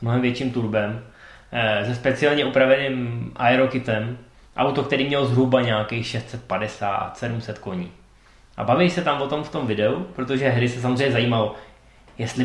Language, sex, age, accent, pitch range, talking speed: Czech, male, 20-39, native, 120-150 Hz, 145 wpm